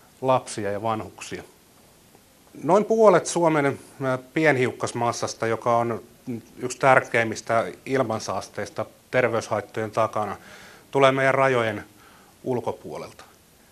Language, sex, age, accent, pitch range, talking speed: Finnish, male, 30-49, native, 115-145 Hz, 80 wpm